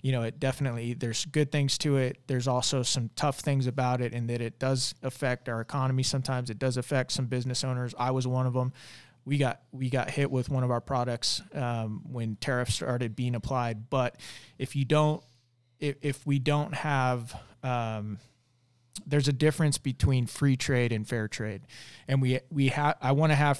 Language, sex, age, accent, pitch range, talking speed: English, male, 20-39, American, 120-140 Hz, 200 wpm